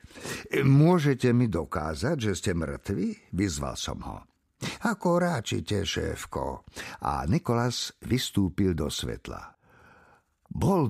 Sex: male